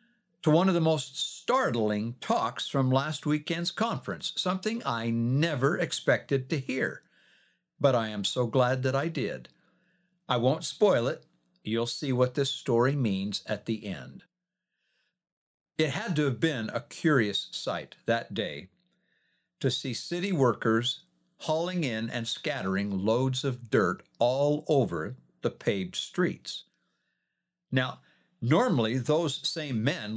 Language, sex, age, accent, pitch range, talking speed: English, male, 60-79, American, 125-185 Hz, 135 wpm